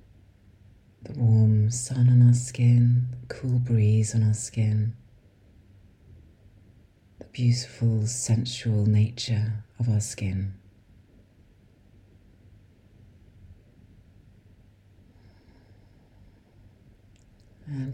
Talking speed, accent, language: 65 wpm, British, English